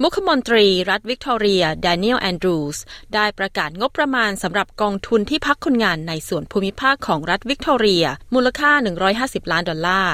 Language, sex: Thai, female